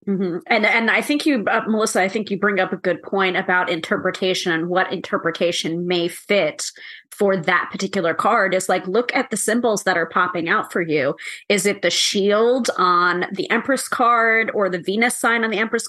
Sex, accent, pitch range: female, American, 185-235 Hz